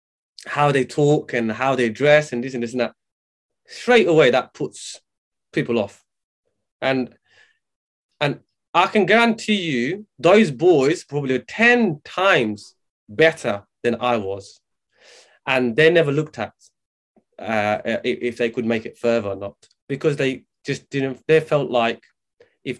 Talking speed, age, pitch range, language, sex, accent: 145 wpm, 20-39, 120-155 Hz, English, male, British